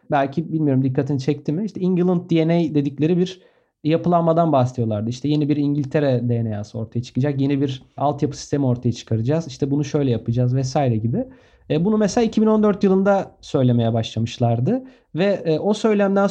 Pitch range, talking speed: 140-195 Hz, 145 wpm